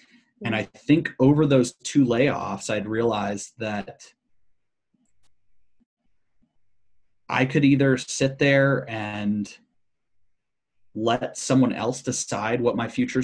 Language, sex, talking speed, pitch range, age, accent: English, male, 105 wpm, 105-135 Hz, 30-49, American